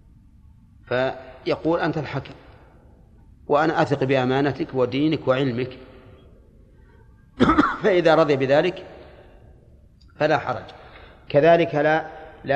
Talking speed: 75 wpm